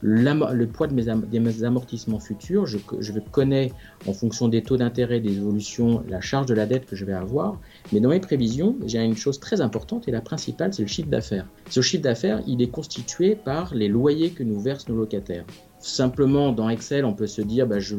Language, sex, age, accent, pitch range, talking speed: French, male, 50-69, French, 105-135 Hz, 210 wpm